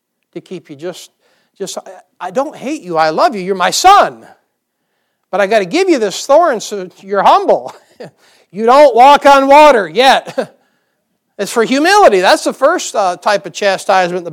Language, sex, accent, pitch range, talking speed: English, male, American, 190-270 Hz, 185 wpm